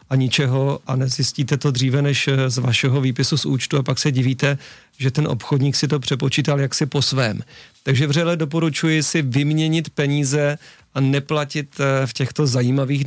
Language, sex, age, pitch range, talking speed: Czech, male, 40-59, 130-145 Hz, 165 wpm